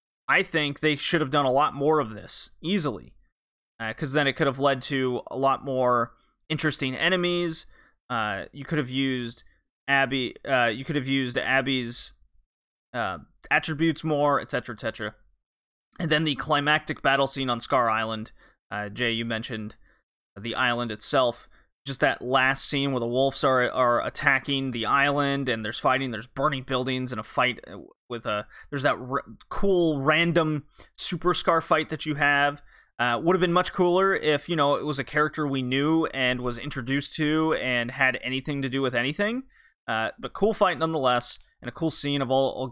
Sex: male